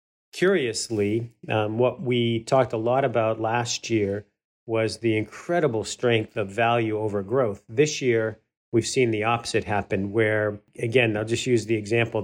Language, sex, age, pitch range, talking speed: English, male, 40-59, 110-125 Hz, 155 wpm